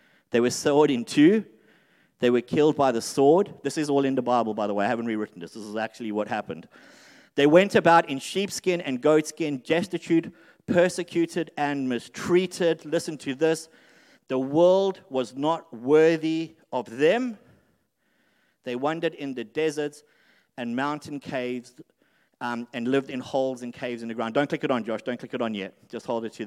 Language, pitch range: English, 125-170 Hz